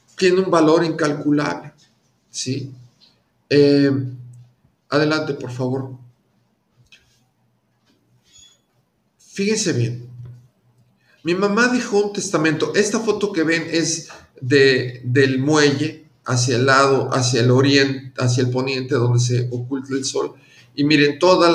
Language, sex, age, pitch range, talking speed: English, male, 50-69, 125-160 Hz, 115 wpm